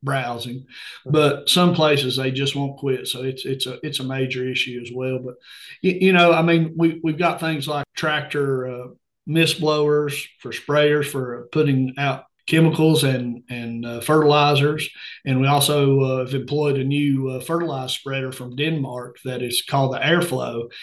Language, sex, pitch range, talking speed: English, male, 130-150 Hz, 175 wpm